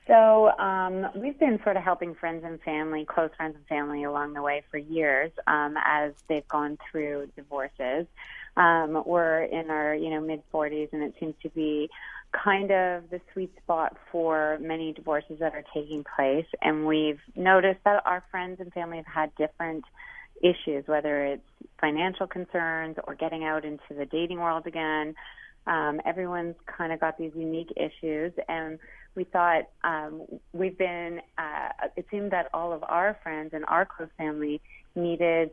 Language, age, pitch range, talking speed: English, 30-49, 155-175 Hz, 170 wpm